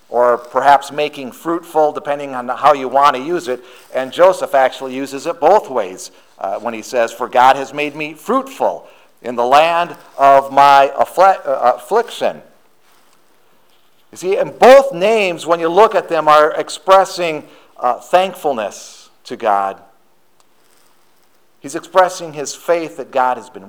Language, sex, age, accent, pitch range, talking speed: English, male, 50-69, American, 120-170 Hz, 150 wpm